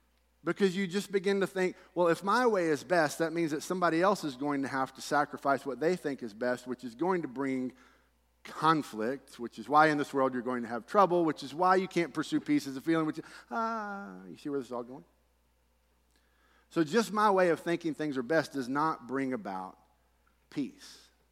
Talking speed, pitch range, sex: 220 wpm, 120-160 Hz, male